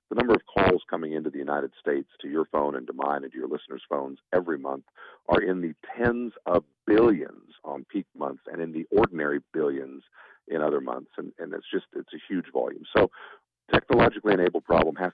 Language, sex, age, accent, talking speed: English, male, 50-69, American, 205 wpm